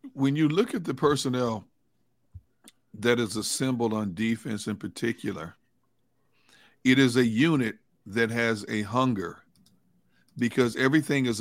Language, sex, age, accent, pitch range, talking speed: English, male, 50-69, American, 115-135 Hz, 125 wpm